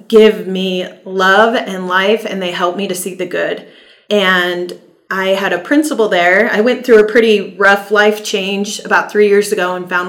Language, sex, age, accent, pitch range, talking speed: English, female, 30-49, American, 180-210 Hz, 195 wpm